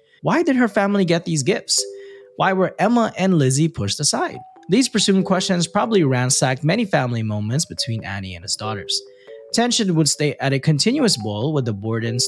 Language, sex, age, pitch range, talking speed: English, male, 20-39, 115-185 Hz, 180 wpm